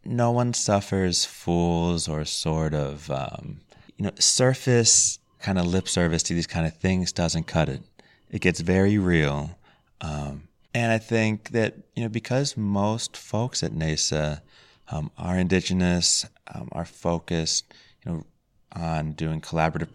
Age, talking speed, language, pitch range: 30-49, 150 wpm, English, 75-110 Hz